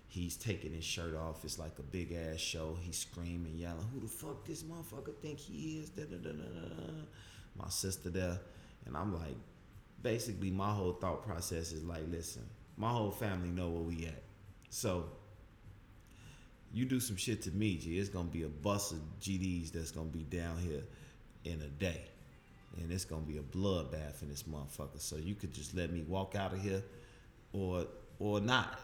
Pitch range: 80-105 Hz